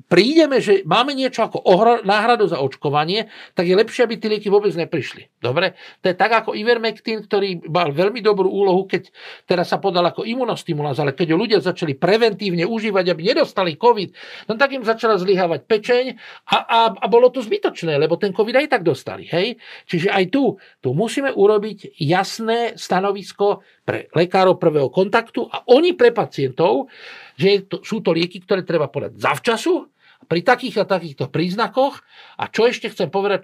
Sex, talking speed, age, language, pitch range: male, 175 wpm, 50-69, Slovak, 170-225 Hz